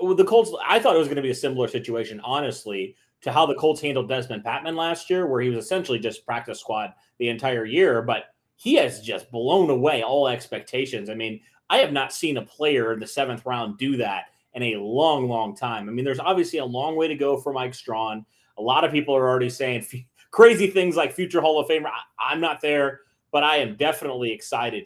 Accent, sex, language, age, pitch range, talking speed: American, male, English, 30-49, 125-165 Hz, 225 wpm